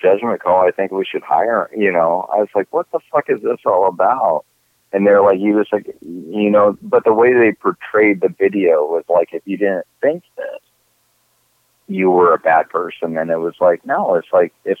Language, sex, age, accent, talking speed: English, male, 30-49, American, 220 wpm